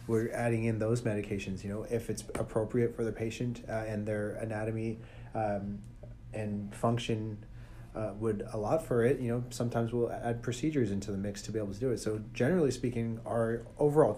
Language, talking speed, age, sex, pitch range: English, 195 wpm, 30-49, male, 105-115 Hz